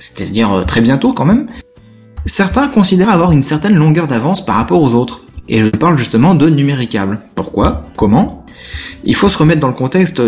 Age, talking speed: 20-39, 185 wpm